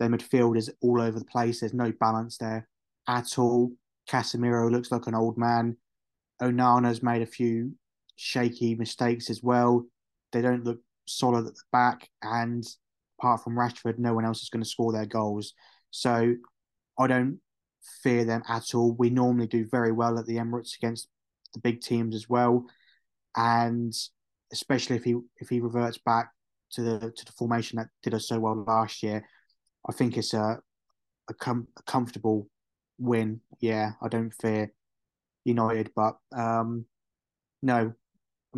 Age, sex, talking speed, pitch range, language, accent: 20-39, male, 165 wpm, 115-125 Hz, English, British